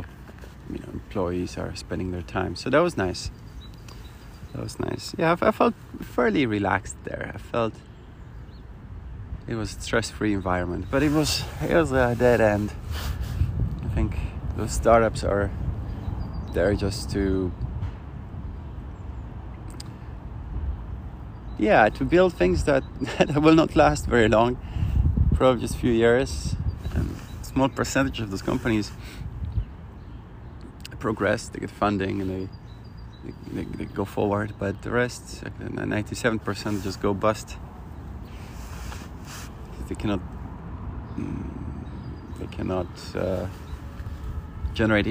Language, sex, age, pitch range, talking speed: English, male, 30-49, 85-110 Hz, 120 wpm